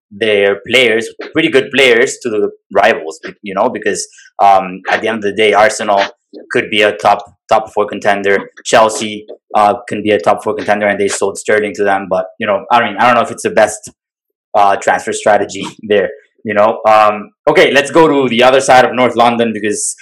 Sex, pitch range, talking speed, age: male, 105-165 Hz, 210 wpm, 20-39